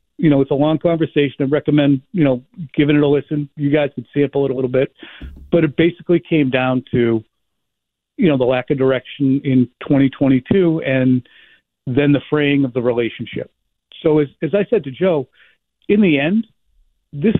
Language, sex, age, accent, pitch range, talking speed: English, male, 50-69, American, 130-150 Hz, 185 wpm